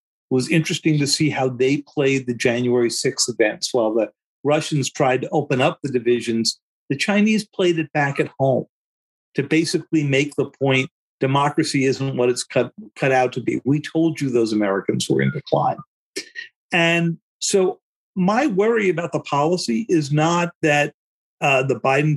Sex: male